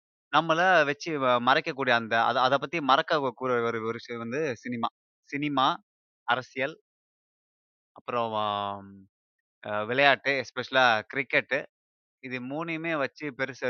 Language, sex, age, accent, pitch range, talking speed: Tamil, male, 20-39, native, 115-145 Hz, 95 wpm